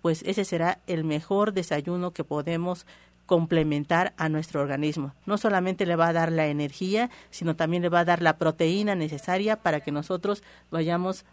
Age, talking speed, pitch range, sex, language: 50-69, 175 wpm, 160-195 Hz, female, Spanish